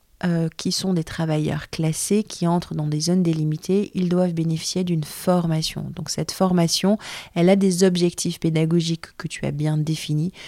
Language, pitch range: French, 160-190 Hz